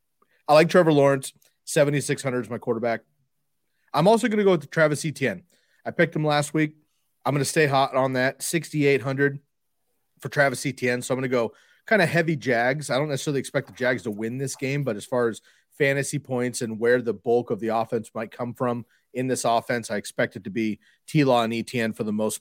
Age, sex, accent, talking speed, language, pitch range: 30-49, male, American, 215 wpm, English, 120-145 Hz